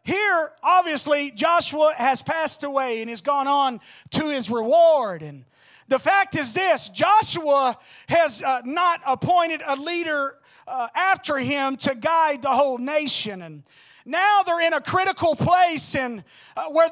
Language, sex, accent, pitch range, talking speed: English, male, American, 260-325 Hz, 155 wpm